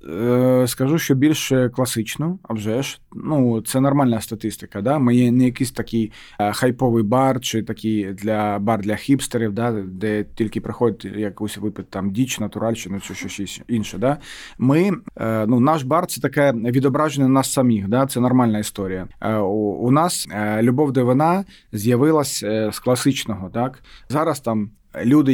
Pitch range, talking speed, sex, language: 110-135 Hz, 150 wpm, male, Ukrainian